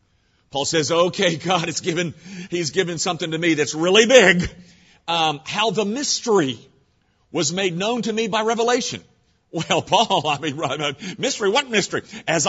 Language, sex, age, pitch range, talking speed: English, male, 50-69, 170-240 Hz, 160 wpm